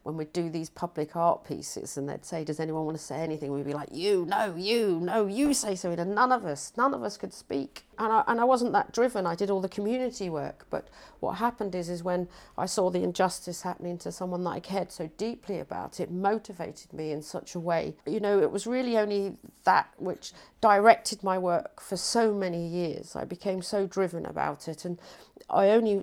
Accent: British